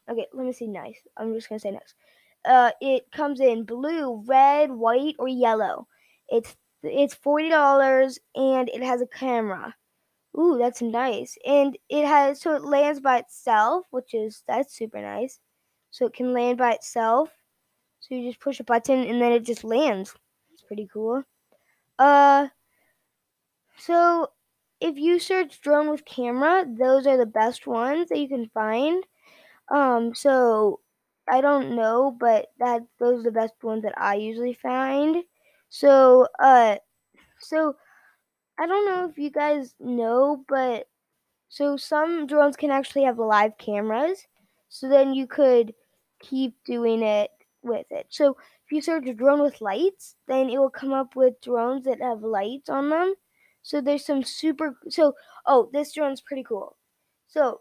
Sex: female